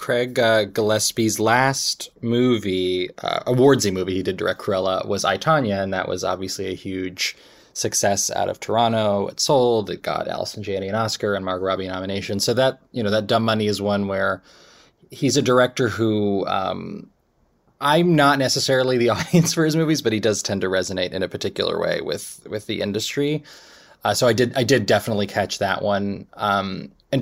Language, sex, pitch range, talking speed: English, male, 95-115 Hz, 190 wpm